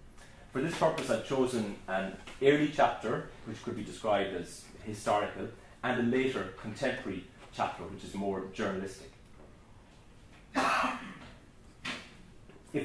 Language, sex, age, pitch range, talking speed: English, male, 30-49, 105-135 Hz, 110 wpm